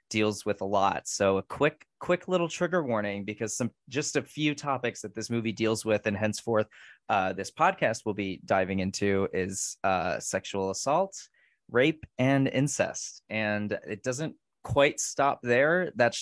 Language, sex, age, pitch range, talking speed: English, male, 20-39, 105-140 Hz, 165 wpm